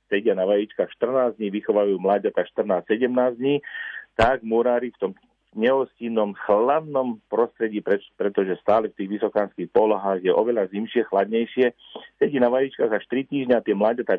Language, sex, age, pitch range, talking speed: Slovak, male, 40-59, 105-125 Hz, 145 wpm